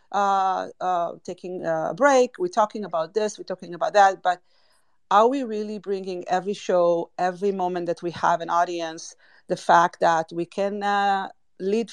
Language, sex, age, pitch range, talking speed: English, female, 40-59, 175-210 Hz, 170 wpm